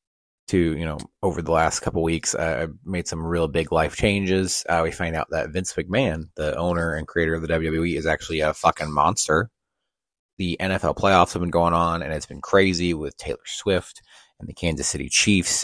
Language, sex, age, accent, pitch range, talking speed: English, male, 30-49, American, 80-90 Hz, 205 wpm